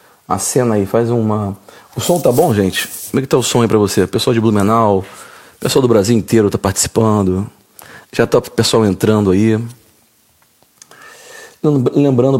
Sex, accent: male, Brazilian